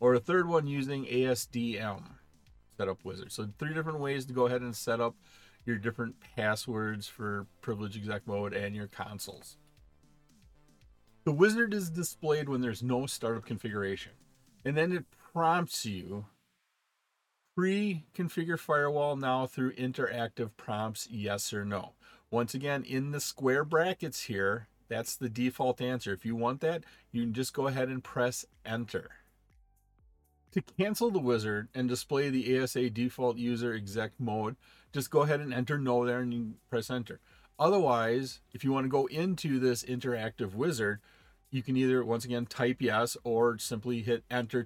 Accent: American